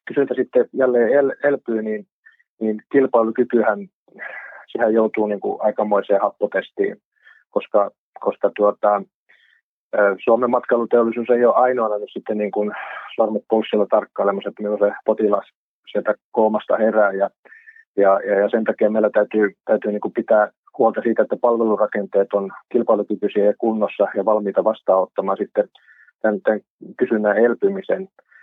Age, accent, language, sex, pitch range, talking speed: 30-49, native, Finnish, male, 105-120 Hz, 120 wpm